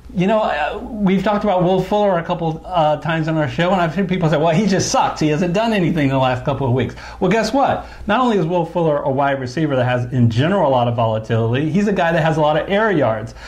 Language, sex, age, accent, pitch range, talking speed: English, male, 50-69, American, 135-190 Hz, 275 wpm